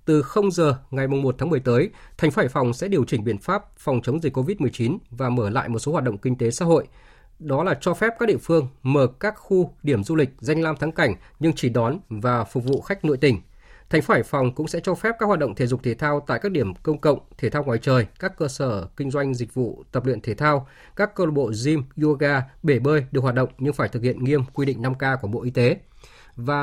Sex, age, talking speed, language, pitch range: male, 20-39, 260 wpm, Vietnamese, 125-160 Hz